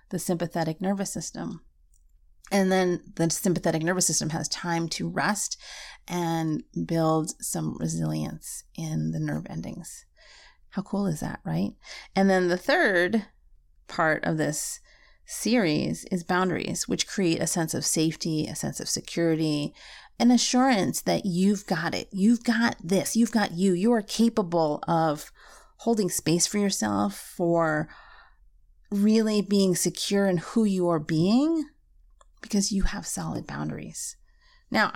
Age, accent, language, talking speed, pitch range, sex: 30-49, American, English, 140 wpm, 165-210 Hz, female